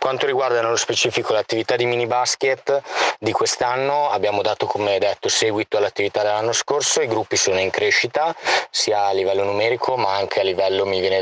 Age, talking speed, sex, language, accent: 20-39, 175 wpm, male, Italian, native